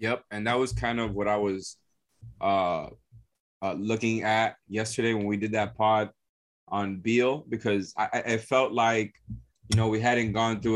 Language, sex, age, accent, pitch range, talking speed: English, male, 20-39, American, 100-110 Hz, 180 wpm